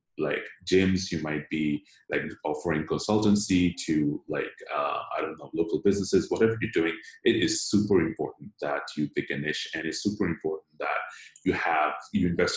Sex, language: male, English